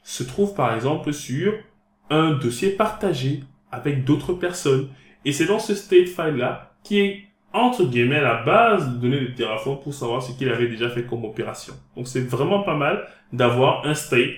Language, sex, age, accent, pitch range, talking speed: French, male, 20-39, French, 120-165 Hz, 185 wpm